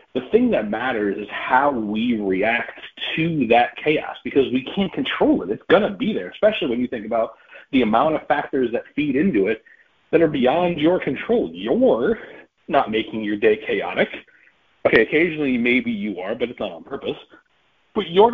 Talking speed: 185 wpm